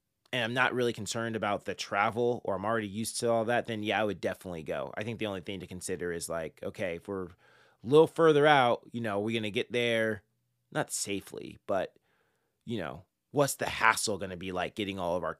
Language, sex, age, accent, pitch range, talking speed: English, male, 20-39, American, 100-130 Hz, 235 wpm